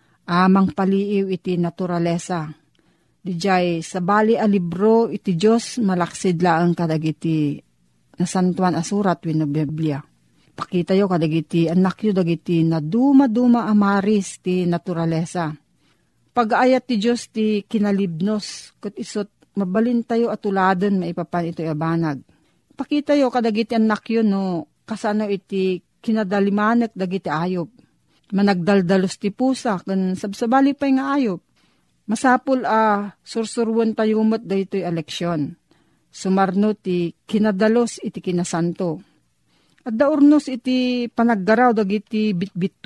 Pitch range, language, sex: 175-225 Hz, Filipino, female